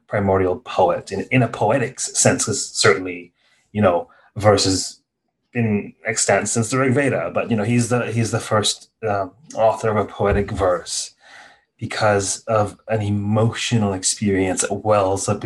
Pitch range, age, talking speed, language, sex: 100-115 Hz, 30-49, 155 wpm, English, male